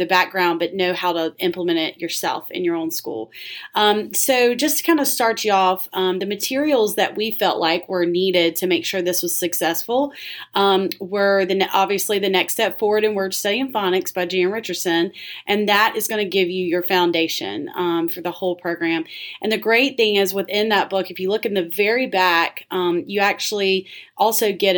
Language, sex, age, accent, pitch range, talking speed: English, female, 30-49, American, 180-215 Hz, 210 wpm